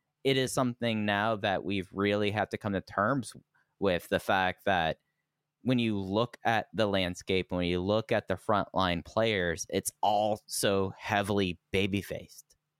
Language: English